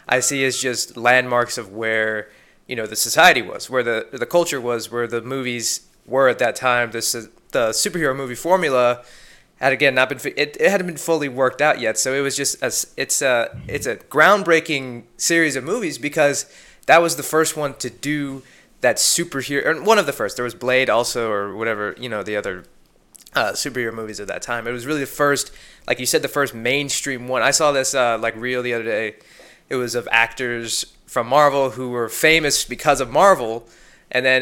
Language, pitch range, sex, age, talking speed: English, 120-145 Hz, male, 20-39, 210 wpm